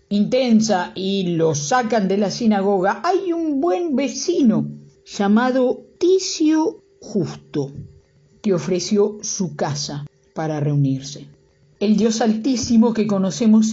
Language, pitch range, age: Spanish, 160-230 Hz, 50-69